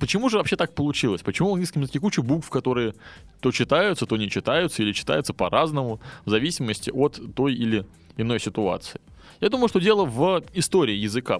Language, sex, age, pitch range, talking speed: Russian, male, 20-39, 110-160 Hz, 180 wpm